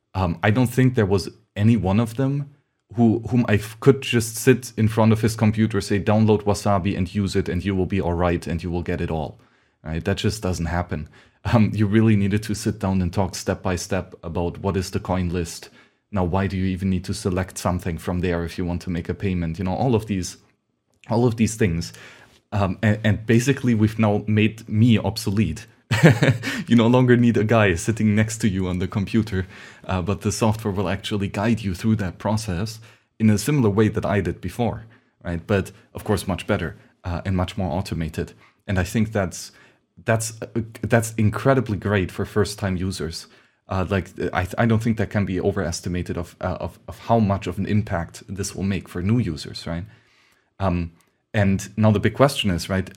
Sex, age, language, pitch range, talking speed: male, 30-49, English, 90-110 Hz, 215 wpm